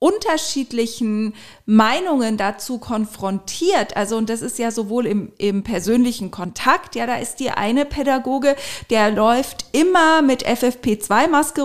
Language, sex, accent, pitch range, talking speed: German, female, German, 225-275 Hz, 130 wpm